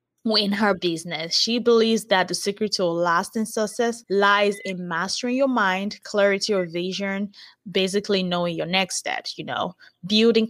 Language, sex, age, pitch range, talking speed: English, female, 20-39, 180-220 Hz, 155 wpm